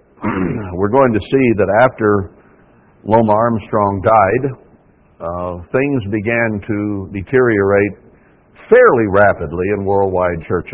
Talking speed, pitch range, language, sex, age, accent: 105 wpm, 100-120 Hz, English, male, 60-79, American